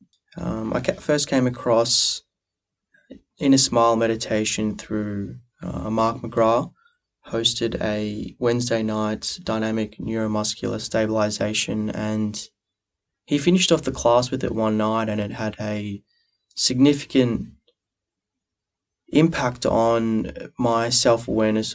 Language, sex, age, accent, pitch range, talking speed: English, male, 20-39, Australian, 110-130 Hz, 105 wpm